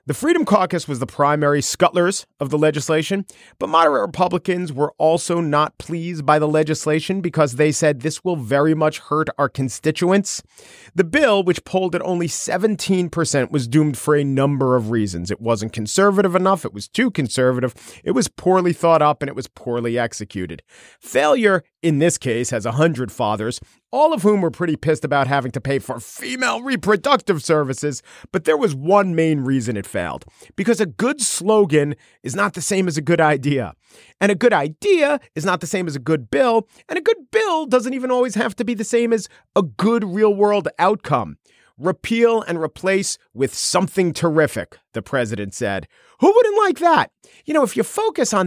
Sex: male